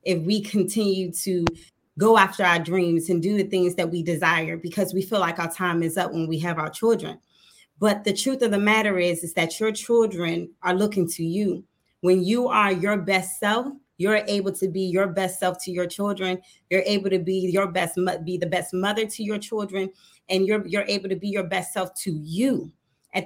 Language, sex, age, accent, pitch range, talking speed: English, female, 30-49, American, 180-210 Hz, 210 wpm